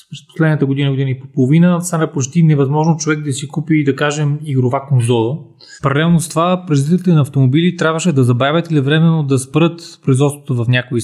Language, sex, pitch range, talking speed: Bulgarian, male, 130-160 Hz, 185 wpm